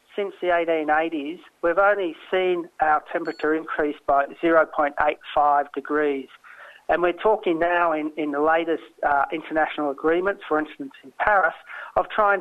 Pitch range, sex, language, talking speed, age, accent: 155-190 Hz, male, English, 140 wpm, 40-59, Australian